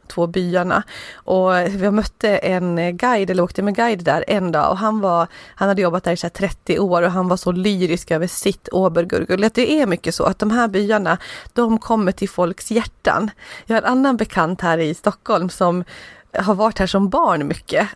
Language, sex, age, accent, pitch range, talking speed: English, female, 30-49, Swedish, 180-220 Hz, 205 wpm